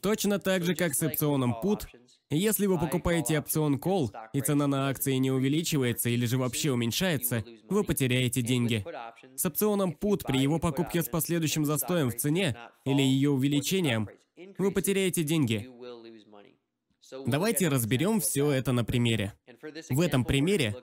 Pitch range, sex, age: 125-175 Hz, male, 20-39